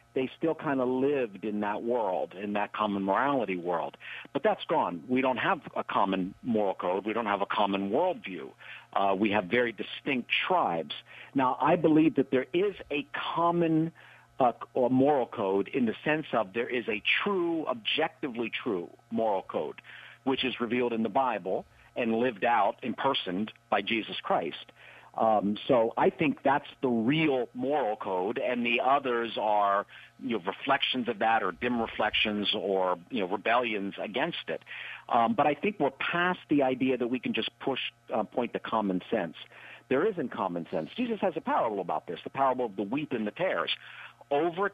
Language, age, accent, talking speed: English, 50-69, American, 190 wpm